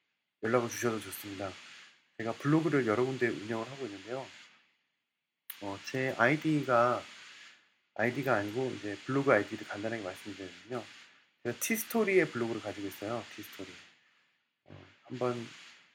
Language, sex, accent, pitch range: Korean, male, native, 105-130 Hz